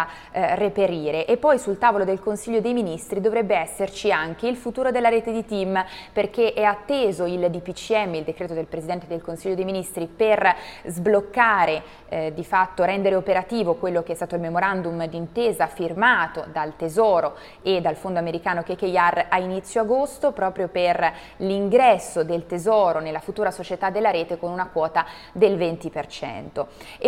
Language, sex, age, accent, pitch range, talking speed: Italian, female, 20-39, native, 175-210 Hz, 155 wpm